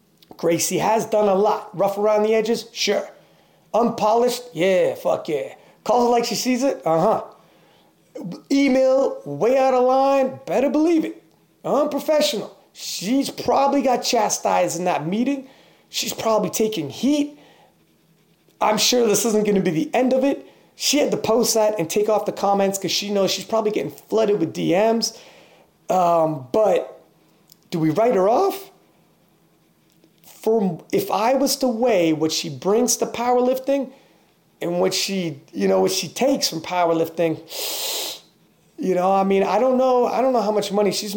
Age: 30-49